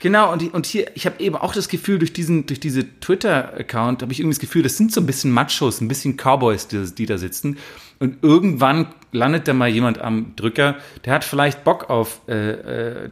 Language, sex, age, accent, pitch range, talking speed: German, male, 30-49, German, 125-160 Hz, 220 wpm